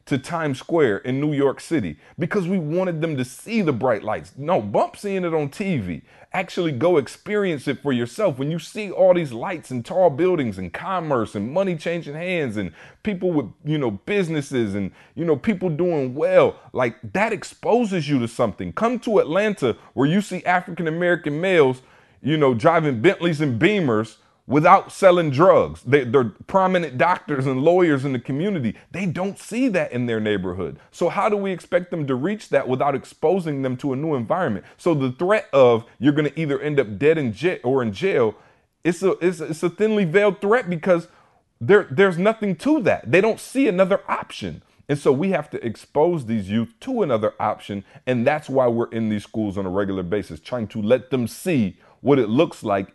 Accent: American